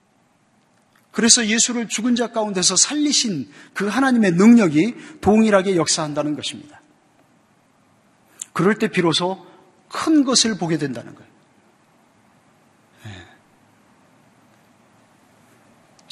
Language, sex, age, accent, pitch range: Korean, male, 40-59, native, 155-230 Hz